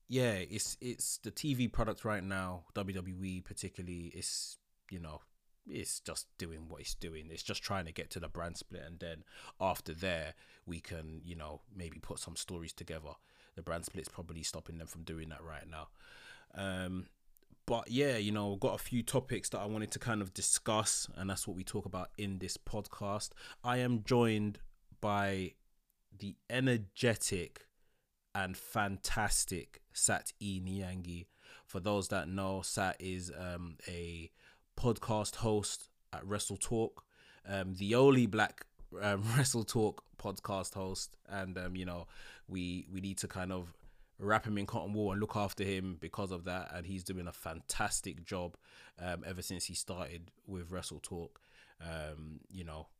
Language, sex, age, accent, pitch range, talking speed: English, male, 20-39, British, 85-105 Hz, 170 wpm